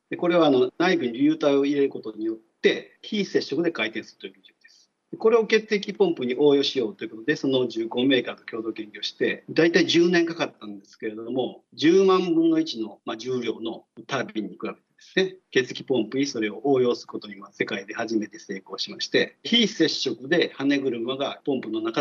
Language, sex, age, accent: Japanese, male, 40-59, native